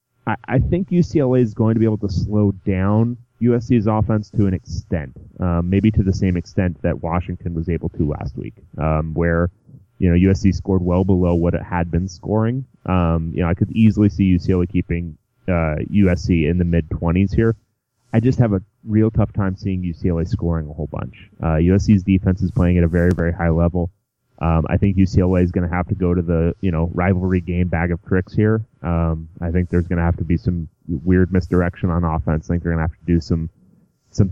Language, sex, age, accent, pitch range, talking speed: English, male, 30-49, American, 85-105 Hz, 220 wpm